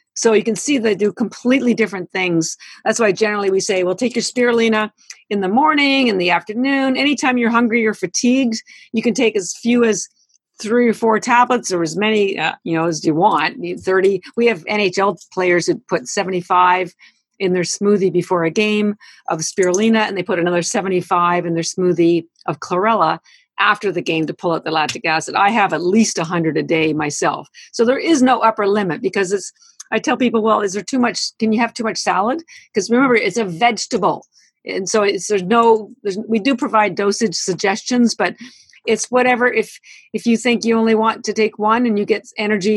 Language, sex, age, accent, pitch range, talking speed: English, female, 50-69, American, 190-235 Hz, 205 wpm